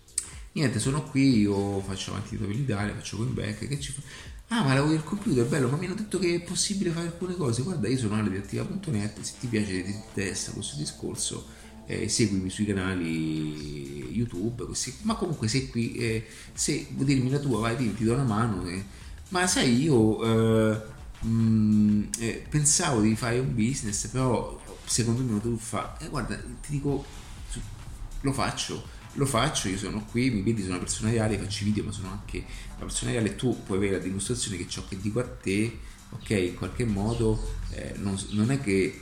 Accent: native